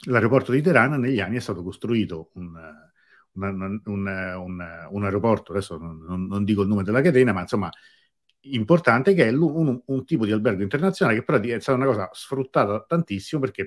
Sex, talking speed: male, 180 wpm